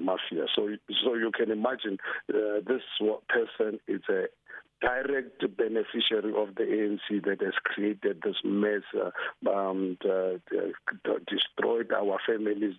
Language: English